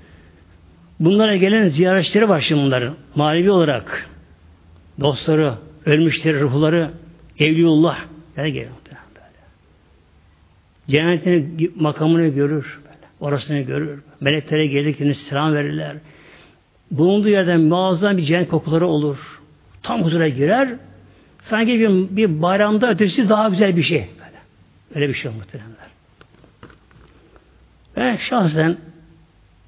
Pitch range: 105-170 Hz